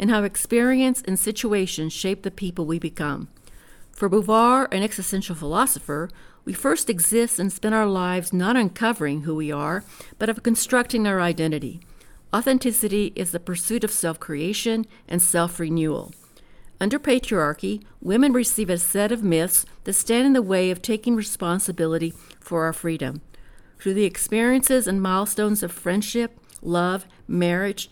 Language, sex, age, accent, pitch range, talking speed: English, female, 50-69, American, 170-225 Hz, 145 wpm